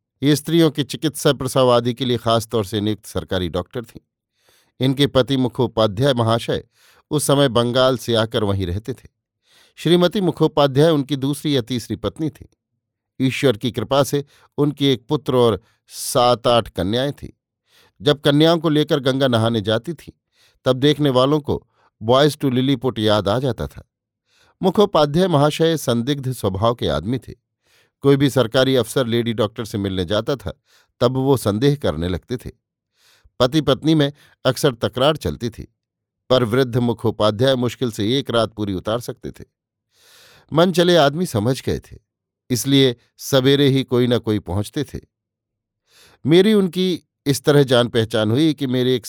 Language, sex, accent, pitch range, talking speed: Hindi, male, native, 110-140 Hz, 160 wpm